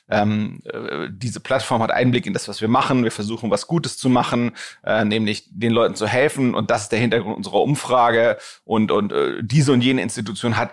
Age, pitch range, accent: 30-49, 110-125 Hz, German